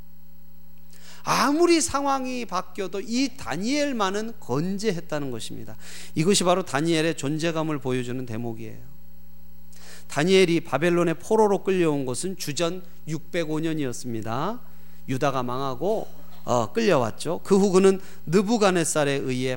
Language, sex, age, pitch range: Korean, male, 40-59, 130-195 Hz